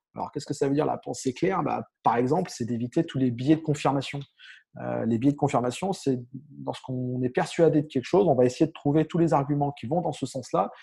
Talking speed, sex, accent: 245 wpm, male, French